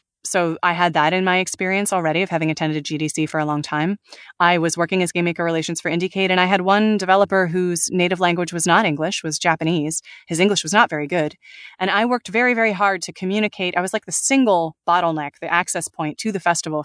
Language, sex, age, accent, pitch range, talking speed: English, female, 20-39, American, 160-200 Hz, 230 wpm